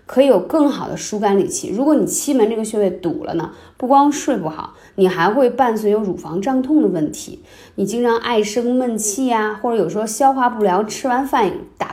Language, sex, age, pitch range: Chinese, female, 20-39, 180-240 Hz